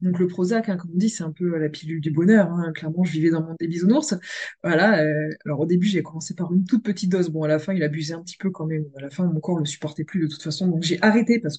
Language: French